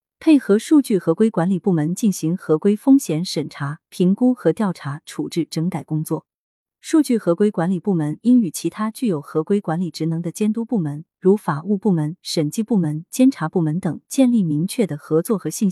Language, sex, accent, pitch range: Chinese, female, native, 160-240 Hz